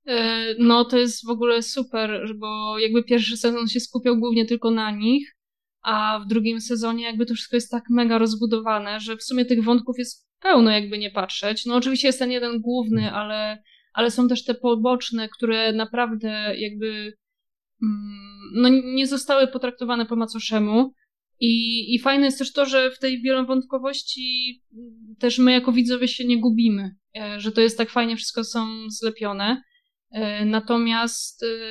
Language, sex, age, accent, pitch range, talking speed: Polish, female, 20-39, native, 215-245 Hz, 160 wpm